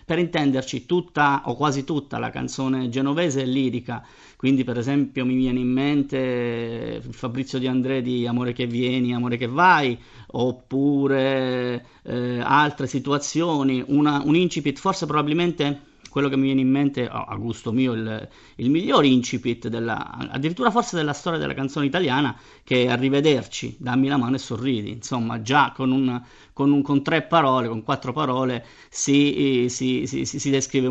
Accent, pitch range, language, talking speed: native, 125-150 Hz, Italian, 165 wpm